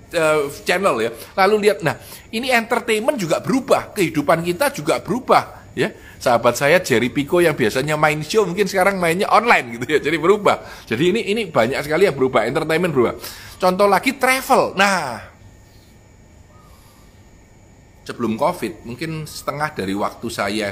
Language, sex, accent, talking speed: Indonesian, male, native, 150 wpm